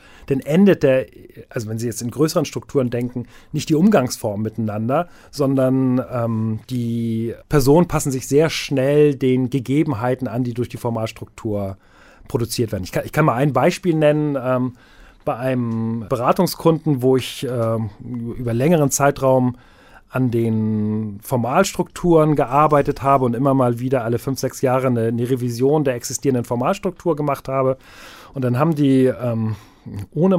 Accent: German